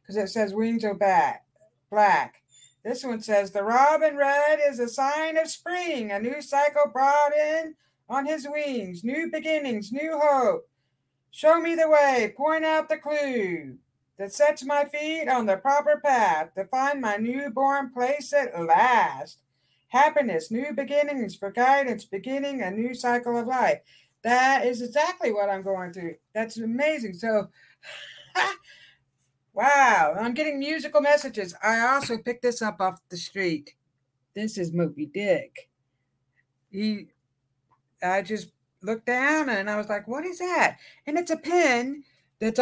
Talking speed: 150 wpm